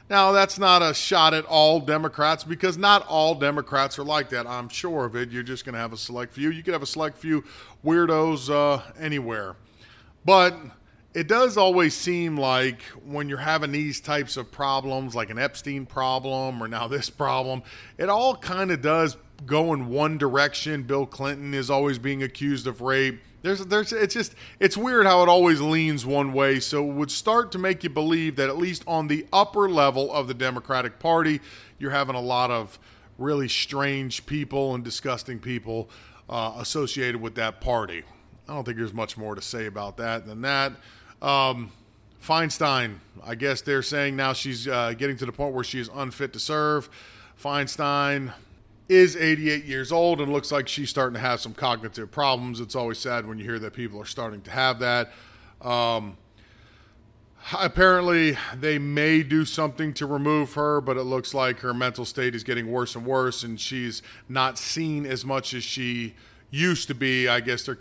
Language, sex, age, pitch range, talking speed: English, male, 40-59, 120-150 Hz, 190 wpm